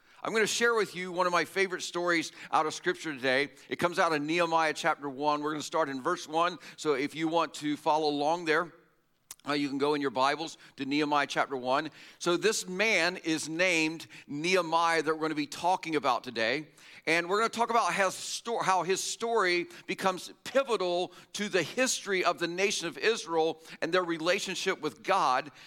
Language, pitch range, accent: English, 160-200 Hz, American